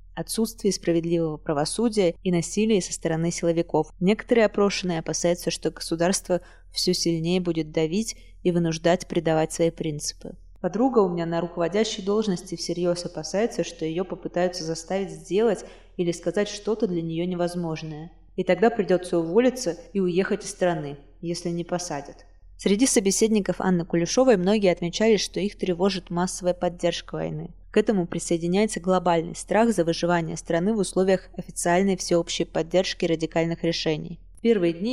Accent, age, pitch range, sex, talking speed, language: native, 20-39, 165-195 Hz, female, 140 wpm, Russian